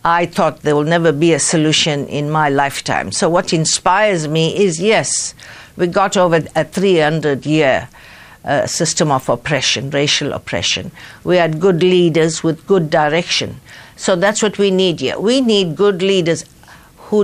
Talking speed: 155 wpm